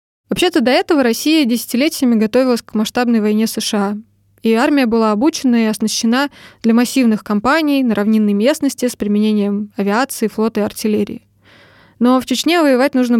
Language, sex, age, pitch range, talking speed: Russian, female, 20-39, 215-255 Hz, 150 wpm